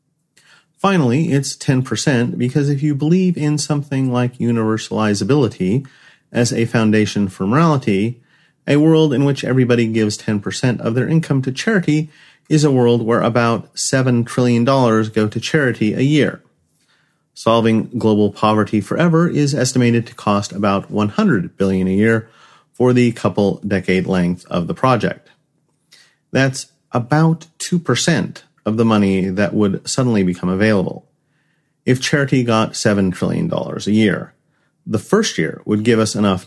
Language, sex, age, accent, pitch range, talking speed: English, male, 40-59, American, 110-150 Hz, 140 wpm